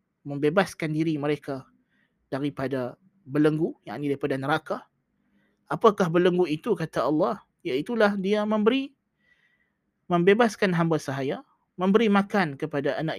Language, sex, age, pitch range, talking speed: Malay, male, 20-39, 160-200 Hz, 110 wpm